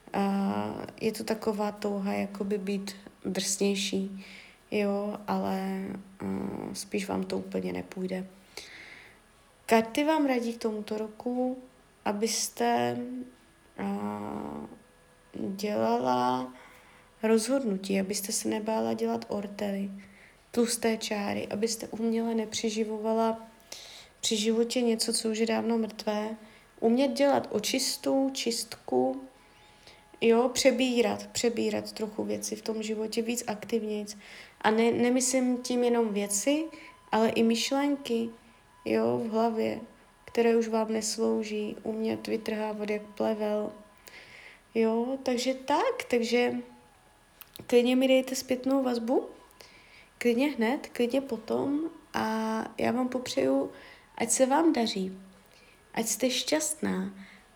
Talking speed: 105 wpm